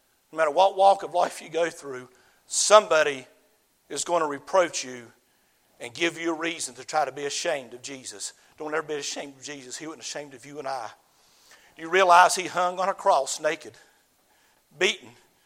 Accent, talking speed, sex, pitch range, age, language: American, 190 wpm, male, 165-200 Hz, 50-69, English